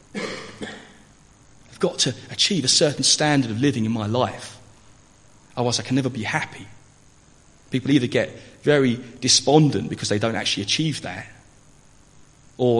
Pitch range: 105-135 Hz